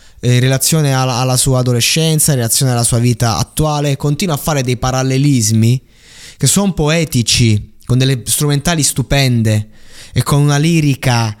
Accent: native